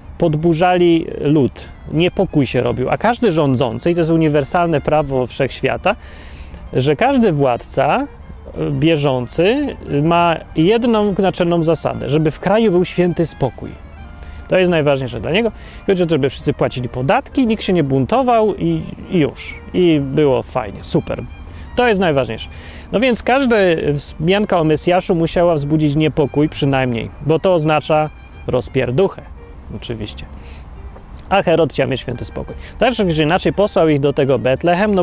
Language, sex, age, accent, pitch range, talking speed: Polish, male, 30-49, native, 120-175 Hz, 140 wpm